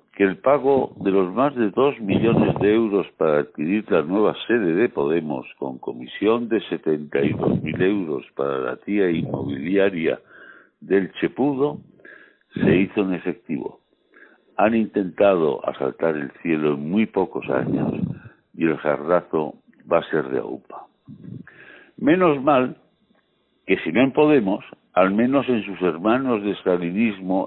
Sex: male